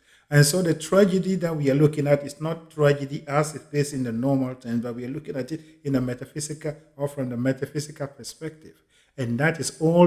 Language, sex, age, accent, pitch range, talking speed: English, male, 50-69, Nigerian, 130-160 Hz, 220 wpm